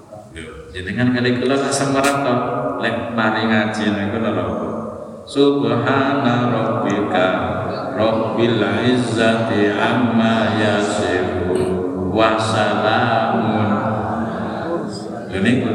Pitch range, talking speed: 100-115 Hz, 90 wpm